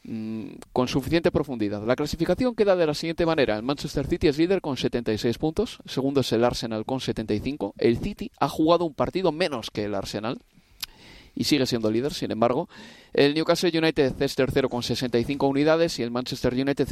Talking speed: 185 wpm